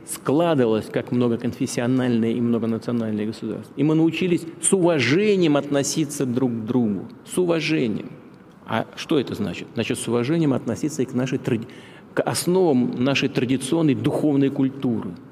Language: Russian